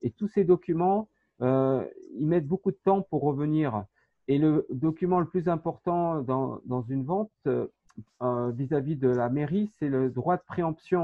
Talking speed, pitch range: 175 wpm, 135-180 Hz